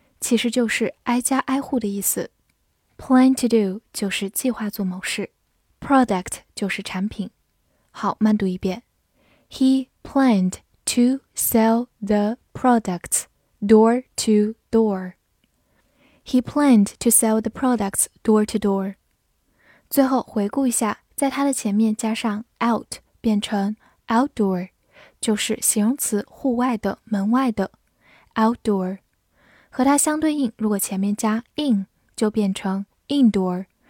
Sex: female